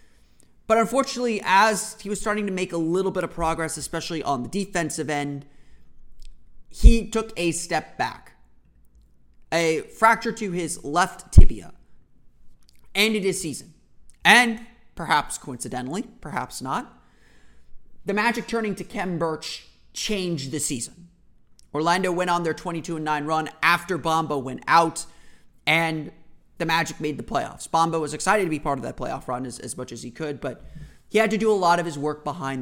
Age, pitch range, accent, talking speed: 30-49, 145-190 Hz, American, 165 wpm